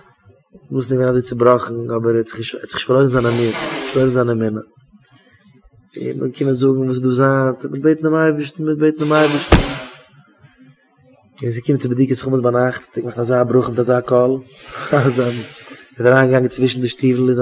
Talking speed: 70 wpm